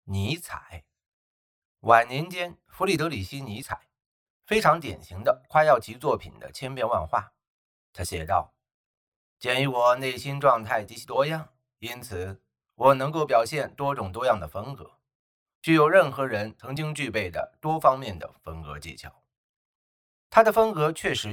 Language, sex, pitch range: Chinese, male, 95-160 Hz